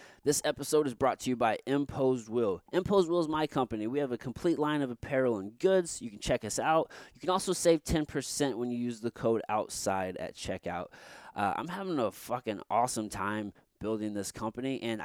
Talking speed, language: 205 wpm, English